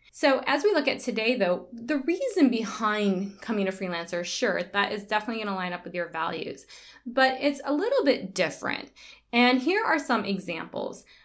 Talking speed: 185 wpm